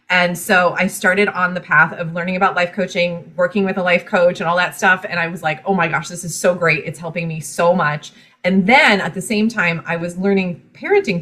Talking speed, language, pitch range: 250 wpm, English, 165-210 Hz